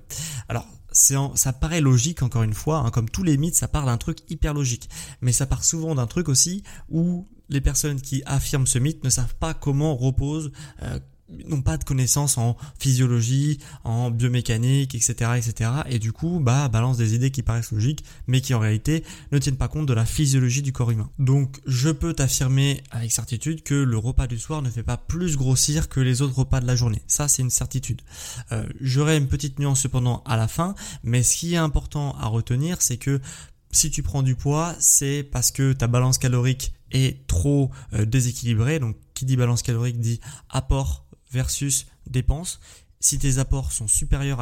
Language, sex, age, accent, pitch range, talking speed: French, male, 20-39, French, 120-140 Hz, 200 wpm